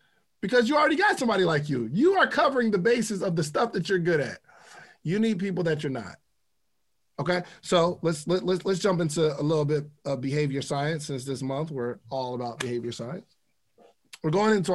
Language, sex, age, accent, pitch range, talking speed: English, male, 20-39, American, 145-190 Hz, 205 wpm